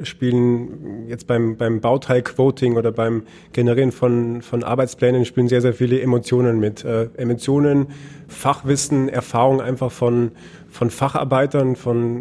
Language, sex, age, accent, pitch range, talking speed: English, male, 30-49, German, 120-135 Hz, 130 wpm